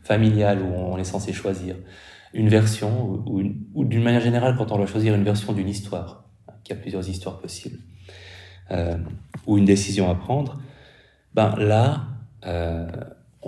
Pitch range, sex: 95-115 Hz, male